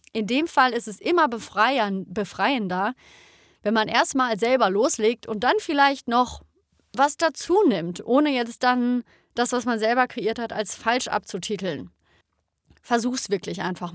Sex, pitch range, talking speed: female, 195-240 Hz, 145 wpm